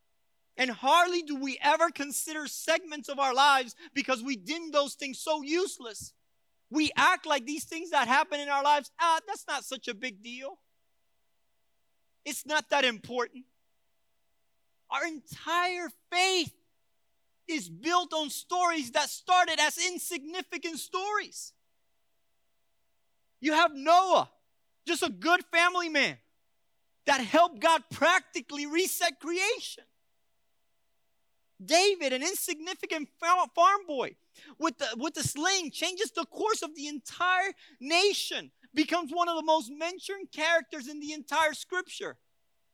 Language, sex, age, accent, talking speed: English, male, 30-49, American, 130 wpm